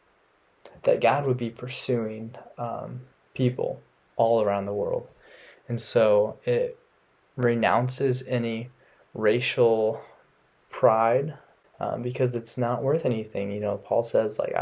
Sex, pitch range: male, 115-130 Hz